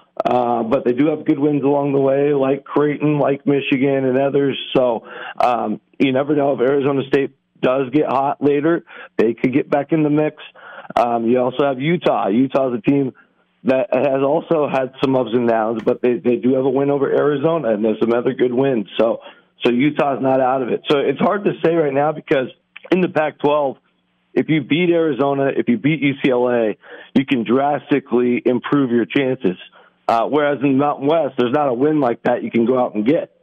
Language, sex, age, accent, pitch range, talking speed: English, male, 40-59, American, 120-145 Hz, 210 wpm